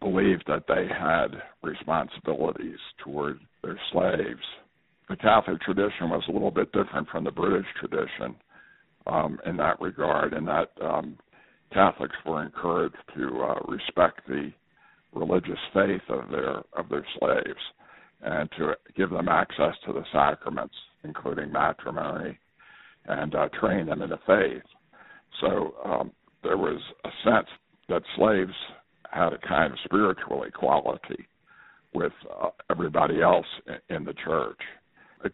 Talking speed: 140 wpm